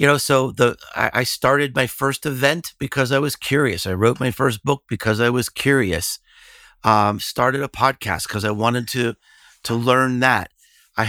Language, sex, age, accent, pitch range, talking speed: English, male, 50-69, American, 120-170 Hz, 185 wpm